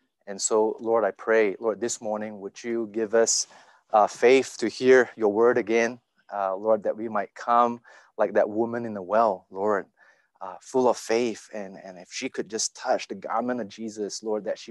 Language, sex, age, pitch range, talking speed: English, male, 30-49, 110-125 Hz, 205 wpm